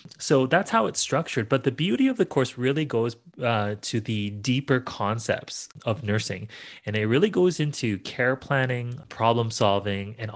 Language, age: English, 30-49